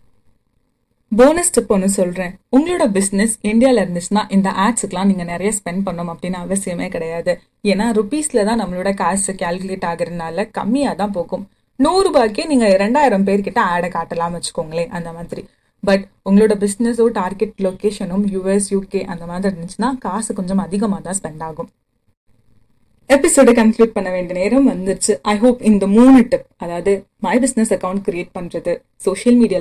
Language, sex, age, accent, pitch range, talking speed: Tamil, female, 30-49, native, 180-235 Hz, 115 wpm